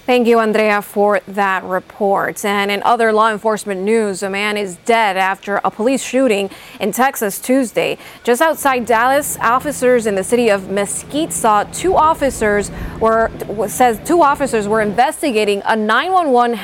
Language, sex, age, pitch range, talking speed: English, female, 20-39, 200-255 Hz, 155 wpm